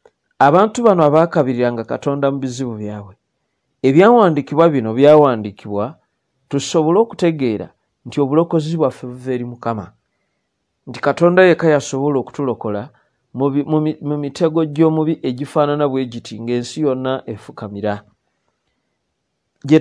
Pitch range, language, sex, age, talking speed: 120-155 Hz, English, male, 40-59, 105 wpm